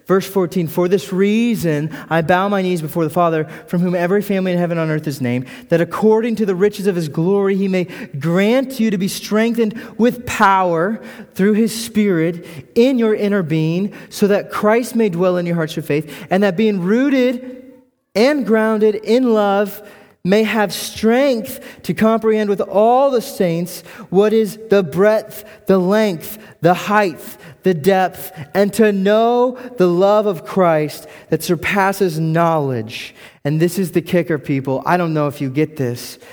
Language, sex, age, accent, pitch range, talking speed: English, male, 30-49, American, 170-220 Hz, 175 wpm